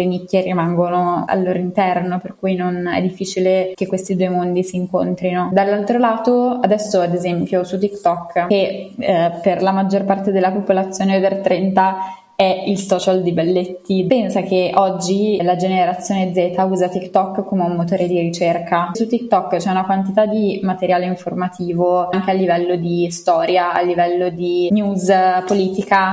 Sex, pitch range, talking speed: female, 180-195 Hz, 160 wpm